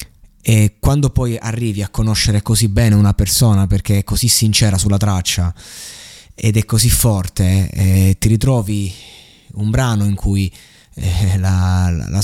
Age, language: 20-39, Italian